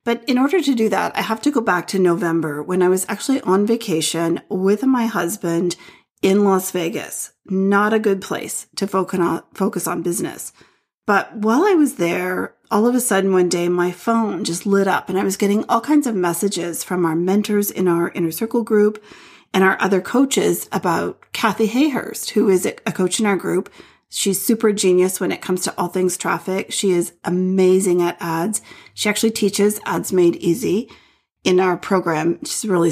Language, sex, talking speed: English, female, 190 wpm